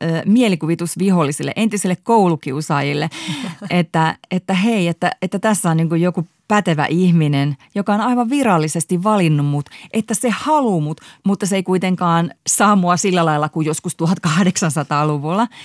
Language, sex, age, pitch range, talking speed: Finnish, female, 30-49, 150-185 Hz, 130 wpm